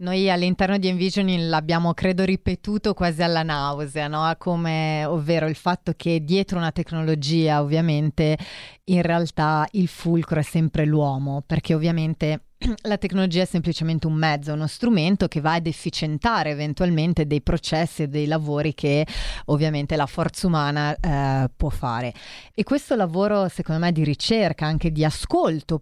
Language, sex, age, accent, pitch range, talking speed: Italian, female, 30-49, native, 155-185 Hz, 150 wpm